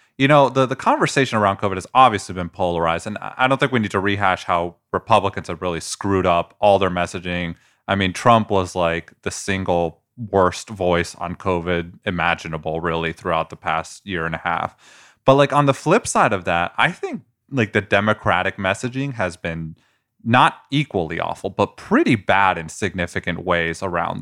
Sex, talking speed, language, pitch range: male, 185 wpm, English, 90-125 Hz